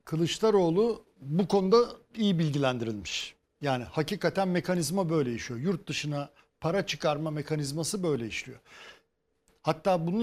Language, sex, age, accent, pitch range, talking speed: Turkish, male, 60-79, native, 155-200 Hz, 110 wpm